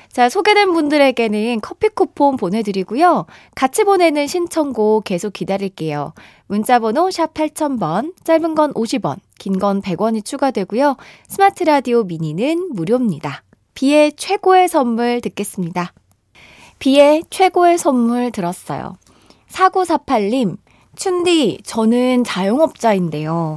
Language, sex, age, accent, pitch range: Korean, female, 20-39, native, 200-300 Hz